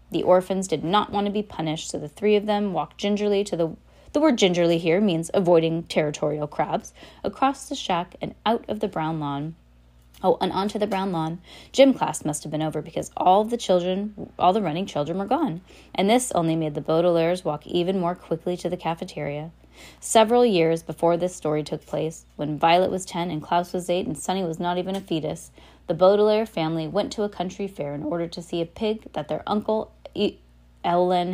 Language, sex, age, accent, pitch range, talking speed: English, female, 20-39, American, 160-215 Hz, 205 wpm